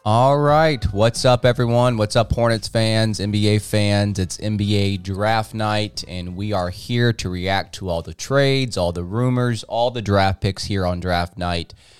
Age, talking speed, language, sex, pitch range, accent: 20-39, 180 wpm, English, male, 90-110 Hz, American